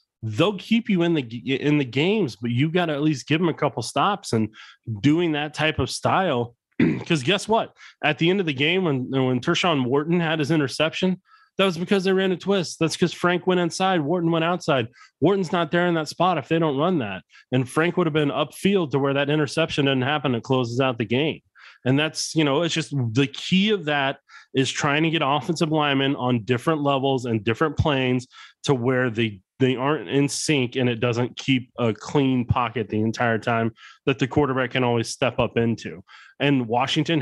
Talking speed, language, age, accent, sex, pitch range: 215 wpm, English, 30-49, American, male, 125-160 Hz